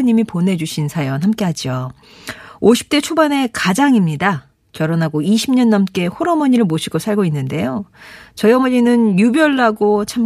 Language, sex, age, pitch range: Korean, female, 40-59, 175-255 Hz